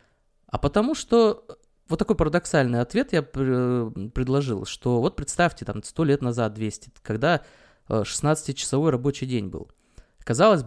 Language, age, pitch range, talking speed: Russian, 20-39, 125-185 Hz, 130 wpm